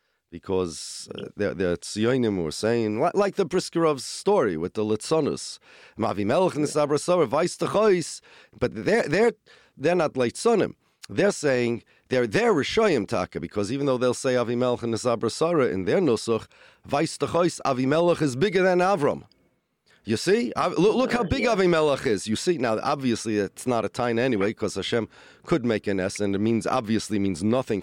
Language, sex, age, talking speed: English, male, 40-59, 155 wpm